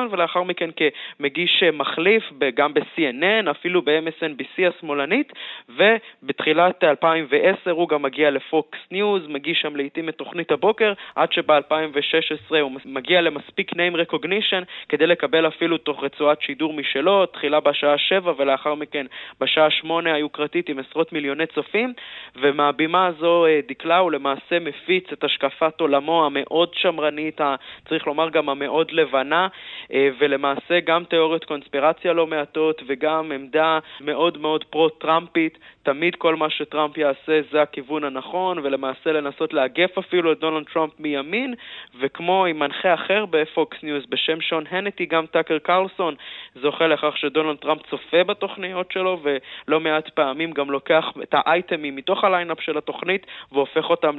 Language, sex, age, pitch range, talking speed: Hebrew, male, 20-39, 145-170 Hz, 130 wpm